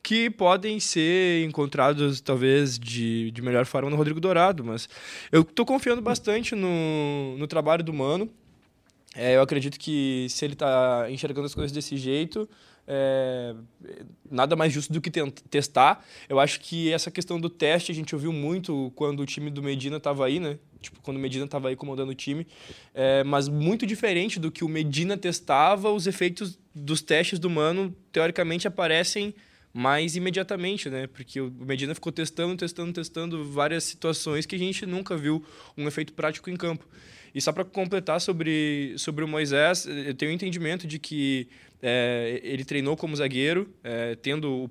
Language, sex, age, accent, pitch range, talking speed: Portuguese, male, 20-39, Brazilian, 135-175 Hz, 170 wpm